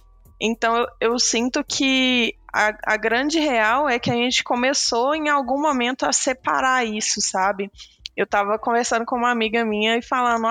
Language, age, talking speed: Portuguese, 20-39, 165 wpm